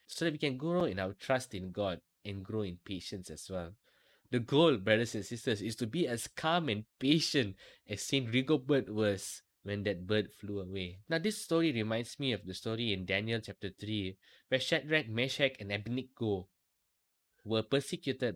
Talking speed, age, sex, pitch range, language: 185 wpm, 20-39, male, 100-130 Hz, English